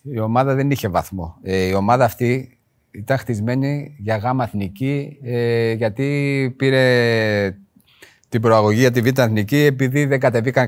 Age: 30-49